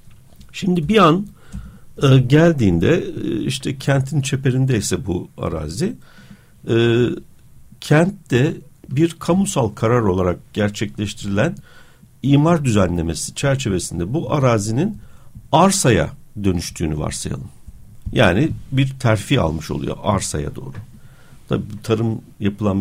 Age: 60-79